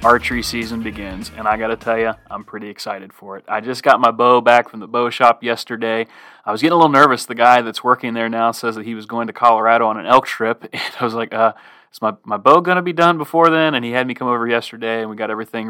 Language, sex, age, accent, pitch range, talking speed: English, male, 30-49, American, 110-125 Hz, 280 wpm